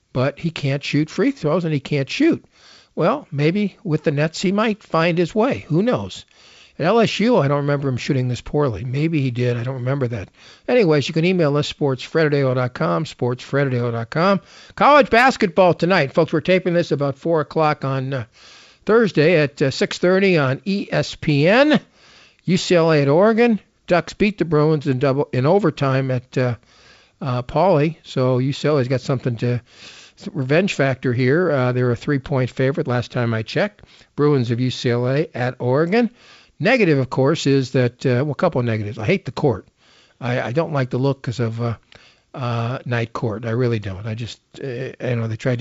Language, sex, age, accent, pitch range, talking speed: English, male, 50-69, American, 125-160 Hz, 180 wpm